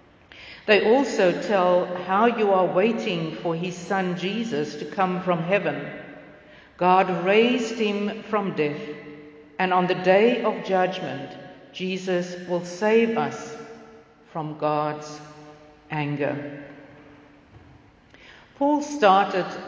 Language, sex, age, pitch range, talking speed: English, female, 60-79, 155-215 Hz, 105 wpm